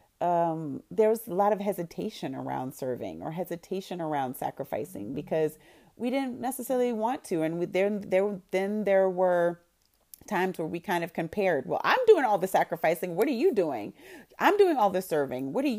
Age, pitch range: 30-49, 145-190 Hz